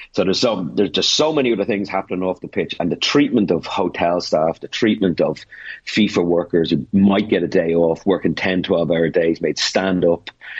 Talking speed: 215 wpm